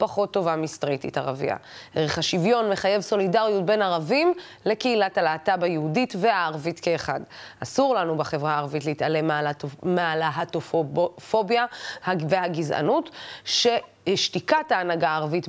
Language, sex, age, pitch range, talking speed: Hebrew, female, 20-39, 165-210 Hz, 100 wpm